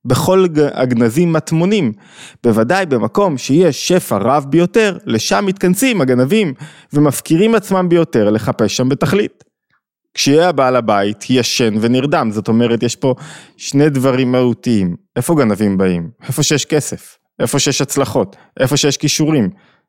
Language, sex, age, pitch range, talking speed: Hebrew, male, 20-39, 120-165 Hz, 125 wpm